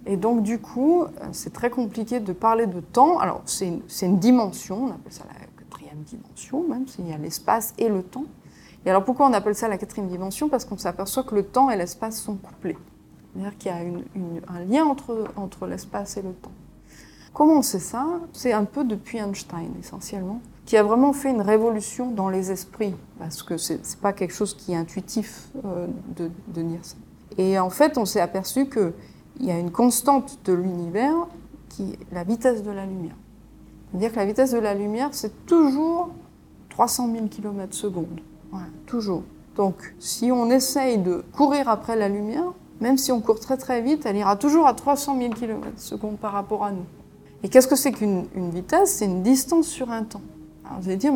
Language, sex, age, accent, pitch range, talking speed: French, female, 30-49, French, 190-255 Hz, 205 wpm